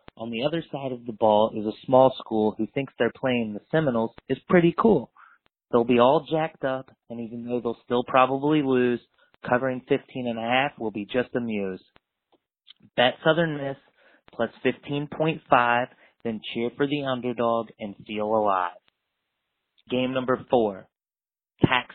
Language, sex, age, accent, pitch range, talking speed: English, male, 30-49, American, 105-125 Hz, 160 wpm